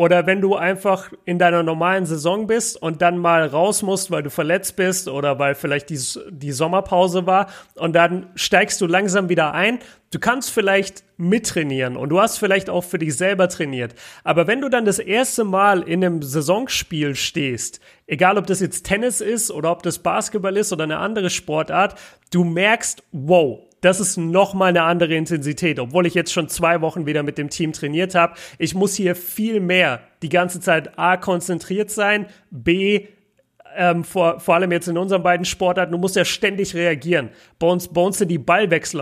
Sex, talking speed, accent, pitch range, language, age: male, 190 wpm, German, 165-190 Hz, German, 40-59